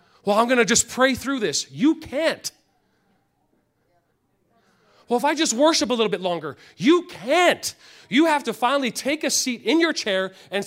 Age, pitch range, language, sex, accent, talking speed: 40-59, 170-285 Hz, English, male, American, 180 wpm